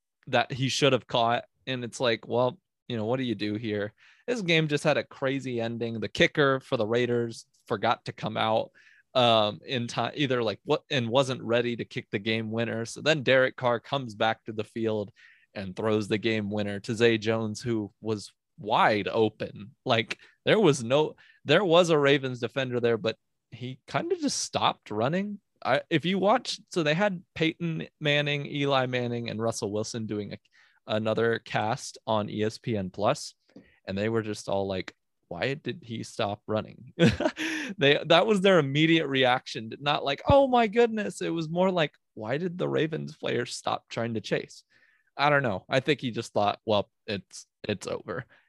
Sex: male